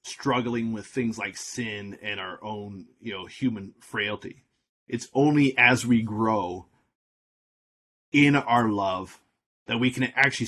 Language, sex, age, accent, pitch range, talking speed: English, male, 30-49, American, 105-130 Hz, 135 wpm